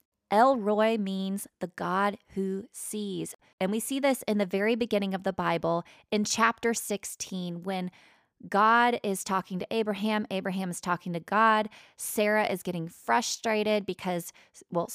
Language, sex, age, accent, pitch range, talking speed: English, female, 20-39, American, 175-215 Hz, 155 wpm